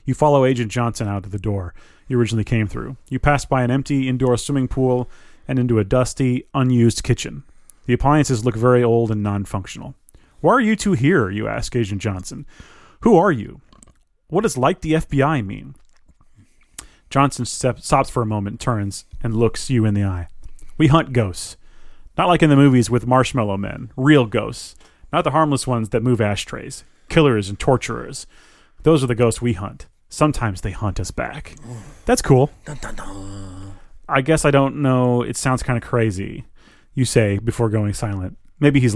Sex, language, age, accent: male, English, 30-49, American